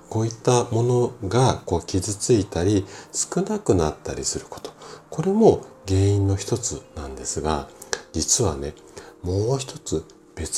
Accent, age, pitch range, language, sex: native, 40-59, 80-115 Hz, Japanese, male